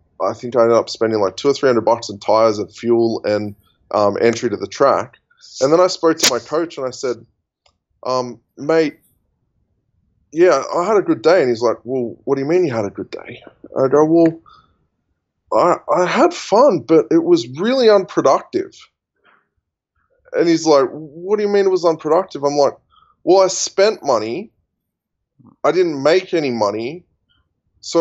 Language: English